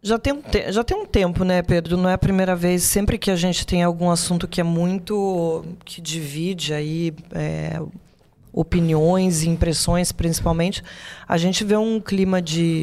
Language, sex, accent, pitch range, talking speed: Portuguese, female, Brazilian, 165-195 Hz, 160 wpm